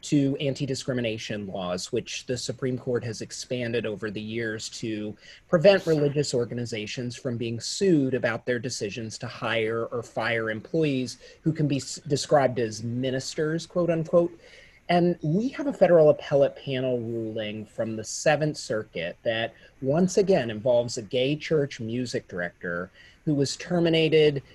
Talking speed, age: 145 wpm, 30-49